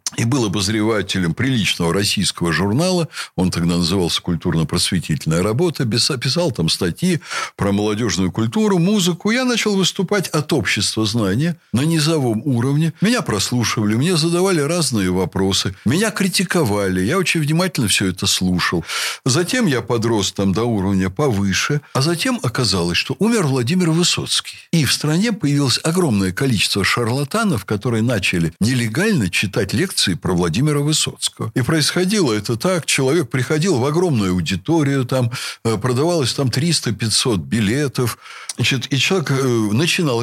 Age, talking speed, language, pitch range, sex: 60-79, 130 wpm, Russian, 105-170 Hz, male